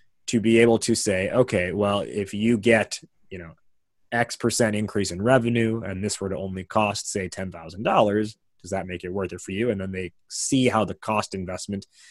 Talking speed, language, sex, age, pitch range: 205 wpm, English, male, 30-49, 95-115 Hz